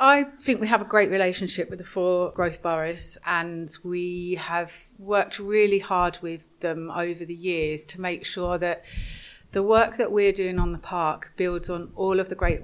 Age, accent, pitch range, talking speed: 30-49, British, 170-200 Hz, 195 wpm